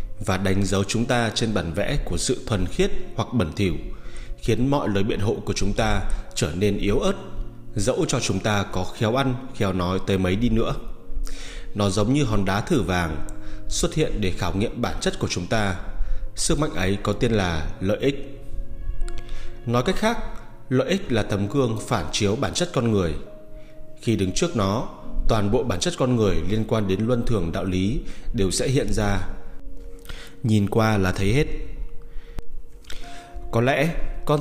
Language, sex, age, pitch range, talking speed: Vietnamese, male, 20-39, 95-120 Hz, 190 wpm